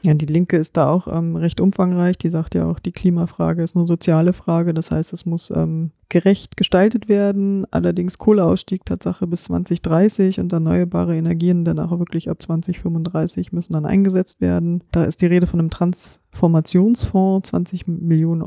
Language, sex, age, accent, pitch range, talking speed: German, female, 20-39, German, 160-185 Hz, 170 wpm